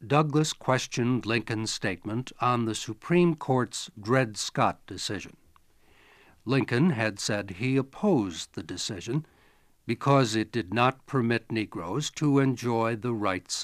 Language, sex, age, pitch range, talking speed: English, male, 60-79, 110-140 Hz, 125 wpm